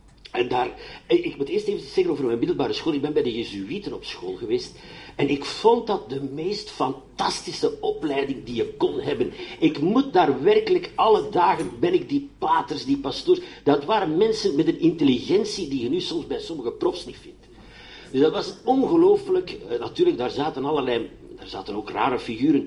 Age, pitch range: 50-69, 275-405 Hz